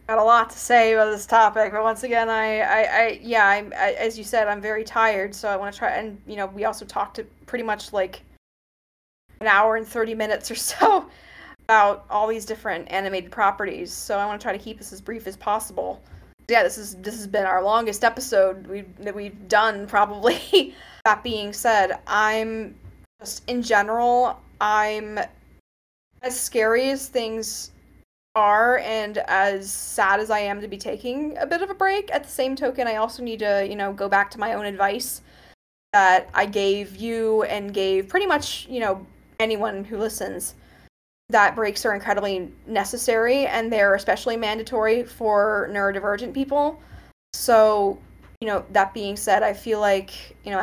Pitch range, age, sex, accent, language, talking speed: 200-230 Hz, 10-29, female, American, English, 185 wpm